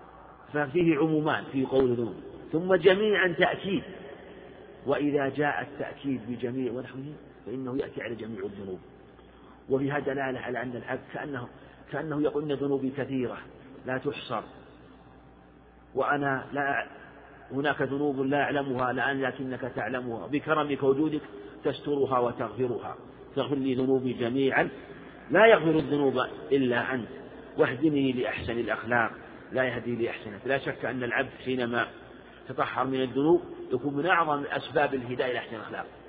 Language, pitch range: Arabic, 130-160 Hz